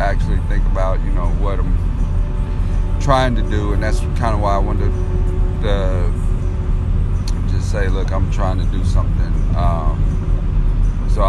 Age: 40-59